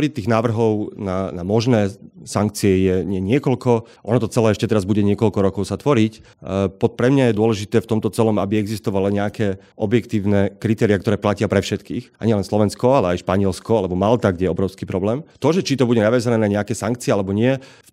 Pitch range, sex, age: 100-115 Hz, male, 30-49